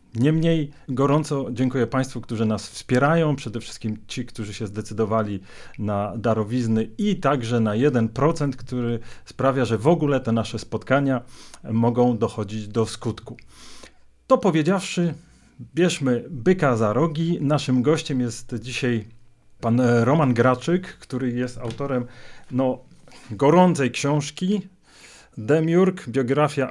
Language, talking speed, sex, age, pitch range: Polish, 115 wpm, male, 40-59, 115-150 Hz